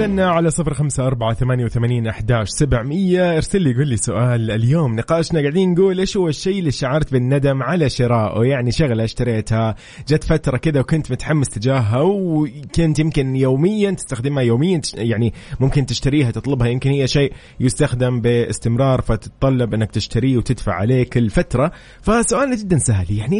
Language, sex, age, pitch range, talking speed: Arabic, male, 20-39, 115-155 Hz, 155 wpm